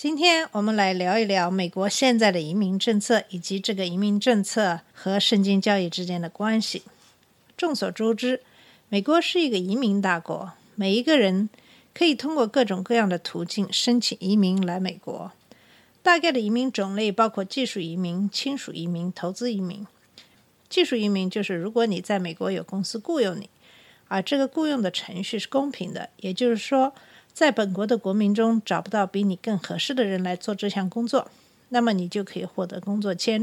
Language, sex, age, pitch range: Chinese, female, 50-69, 190-255 Hz